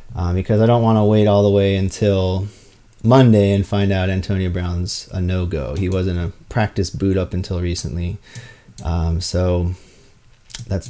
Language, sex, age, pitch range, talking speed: English, male, 30-49, 95-115 Hz, 165 wpm